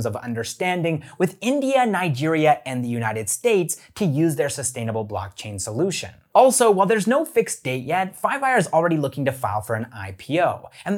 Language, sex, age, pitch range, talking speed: English, male, 30-49, 120-180 Hz, 175 wpm